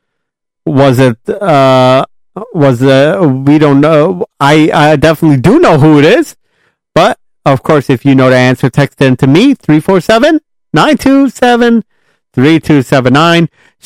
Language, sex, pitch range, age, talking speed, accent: English, male, 140-190 Hz, 40-59, 125 wpm, American